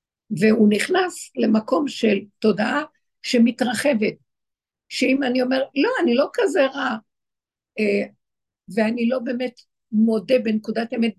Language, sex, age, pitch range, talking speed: Hebrew, female, 60-79, 210-255 Hz, 105 wpm